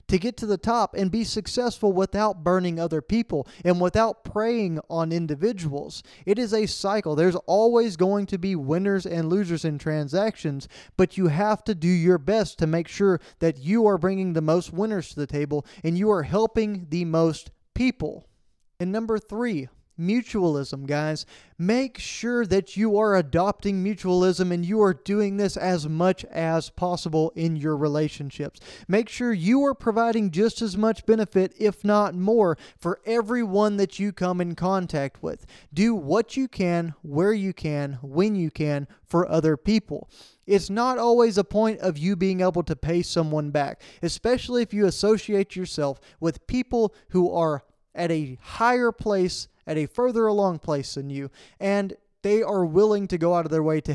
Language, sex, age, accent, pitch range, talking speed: English, male, 20-39, American, 165-215 Hz, 175 wpm